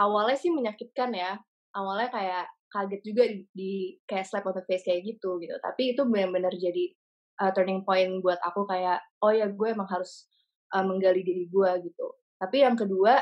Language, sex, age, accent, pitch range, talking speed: English, female, 20-39, Indonesian, 190-245 Hz, 185 wpm